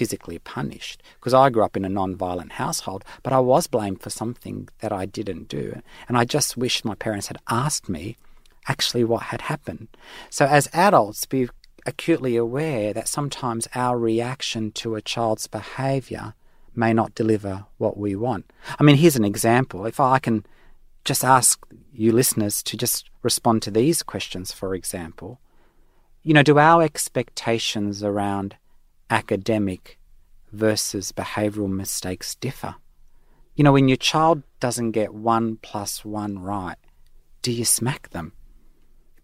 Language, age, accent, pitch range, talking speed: English, 40-59, Australian, 100-140 Hz, 155 wpm